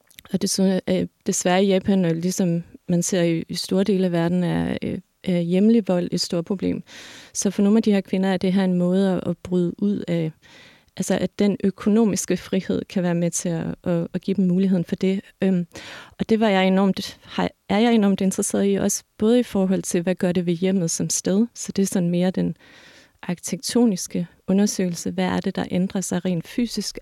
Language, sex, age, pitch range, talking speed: Danish, female, 30-49, 180-205 Hz, 200 wpm